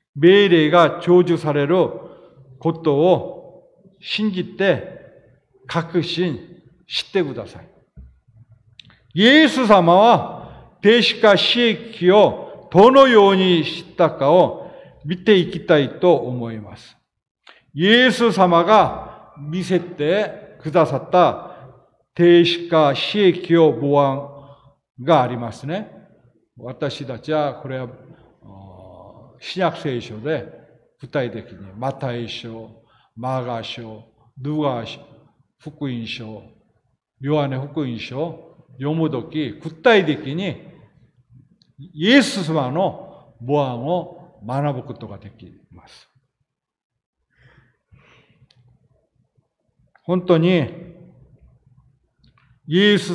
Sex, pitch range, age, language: male, 130-175 Hz, 40-59, Japanese